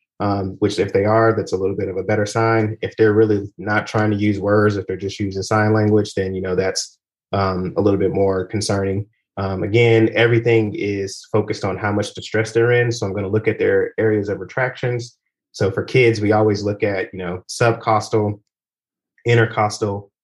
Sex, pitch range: male, 100-115 Hz